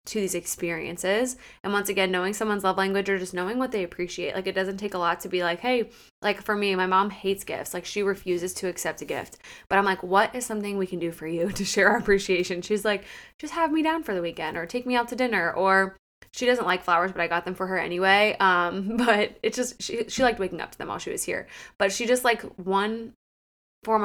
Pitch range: 180-210 Hz